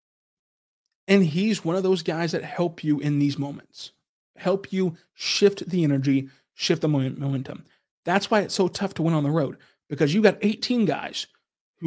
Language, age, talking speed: English, 20-39, 180 wpm